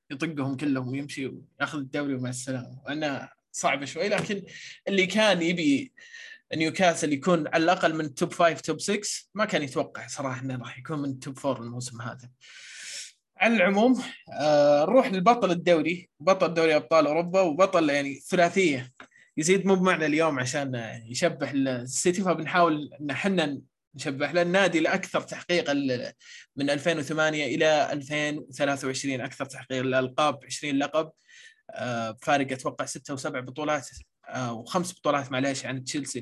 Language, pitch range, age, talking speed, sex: Arabic, 135-170 Hz, 20-39, 135 wpm, male